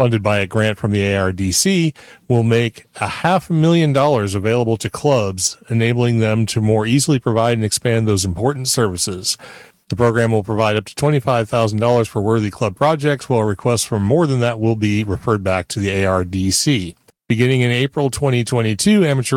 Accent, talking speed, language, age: American, 175 wpm, English, 40-59